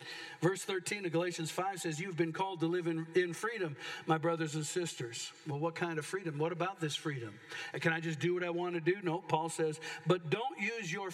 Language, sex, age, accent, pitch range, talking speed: English, male, 50-69, American, 165-205 Hz, 230 wpm